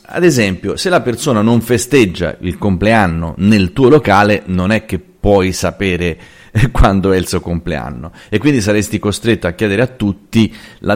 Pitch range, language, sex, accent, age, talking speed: 90-115 Hz, Italian, male, native, 30-49, 170 wpm